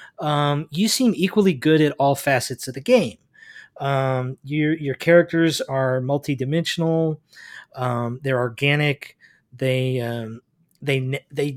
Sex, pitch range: male, 135-165 Hz